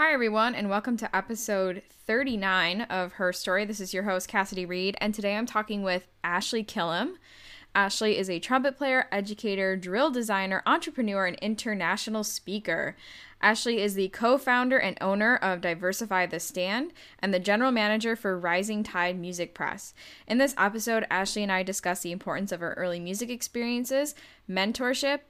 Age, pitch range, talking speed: 10-29, 185-225 Hz, 165 wpm